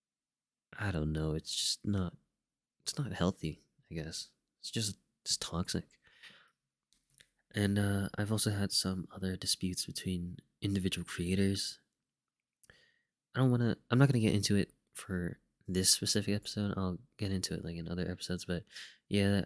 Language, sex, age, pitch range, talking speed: English, male, 20-39, 95-125 Hz, 155 wpm